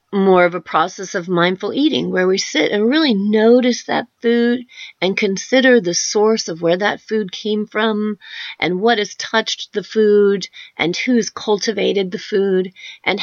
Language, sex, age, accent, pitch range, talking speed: English, female, 30-49, American, 185-270 Hz, 170 wpm